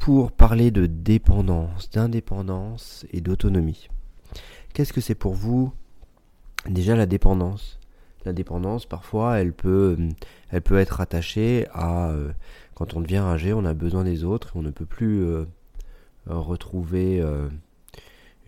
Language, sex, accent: French, male, French